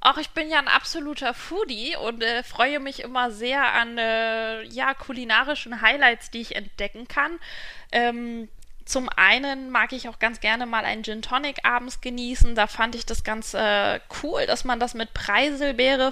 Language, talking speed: German, 180 wpm